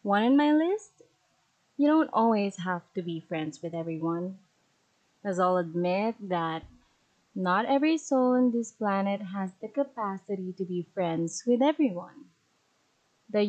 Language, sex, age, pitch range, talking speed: English, female, 20-39, 180-260 Hz, 140 wpm